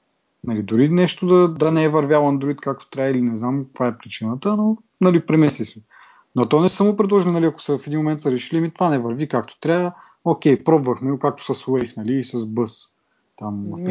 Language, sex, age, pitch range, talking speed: Bulgarian, male, 30-49, 125-180 Hz, 215 wpm